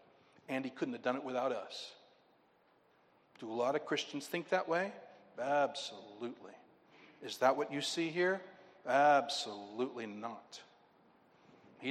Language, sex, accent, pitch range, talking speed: English, male, American, 140-190 Hz, 130 wpm